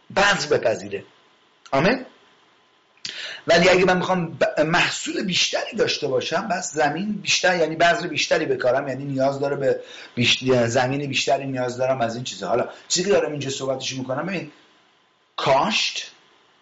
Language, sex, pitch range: English, male, 125-180 Hz